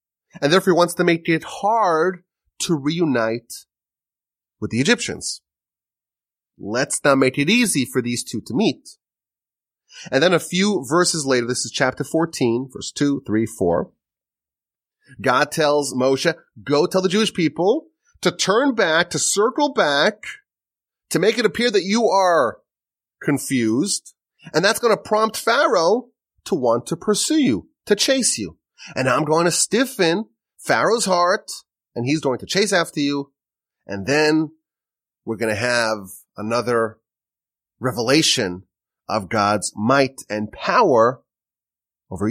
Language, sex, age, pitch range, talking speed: English, male, 30-49, 130-190 Hz, 145 wpm